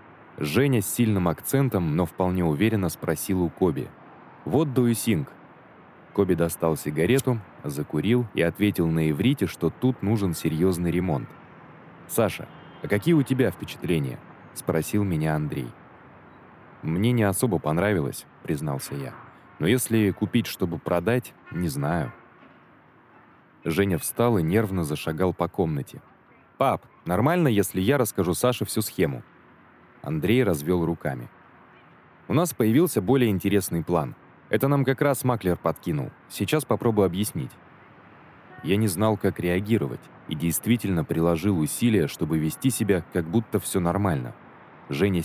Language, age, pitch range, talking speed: Russian, 20-39, 85-125 Hz, 130 wpm